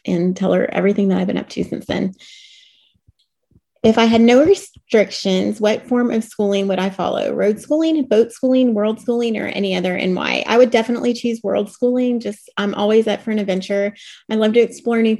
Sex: female